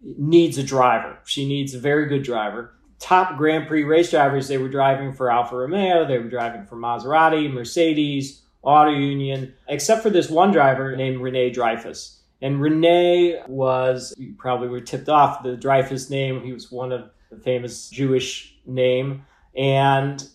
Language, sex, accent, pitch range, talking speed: English, male, American, 125-145 Hz, 165 wpm